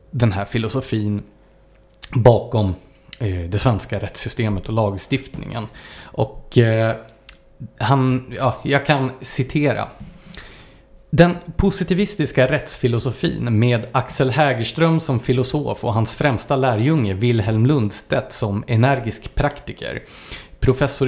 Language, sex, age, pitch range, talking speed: English, male, 30-49, 115-145 Hz, 90 wpm